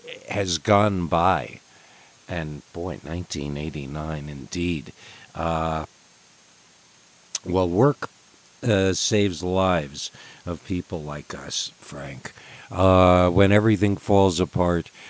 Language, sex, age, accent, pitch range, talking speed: English, male, 50-69, American, 80-100 Hz, 90 wpm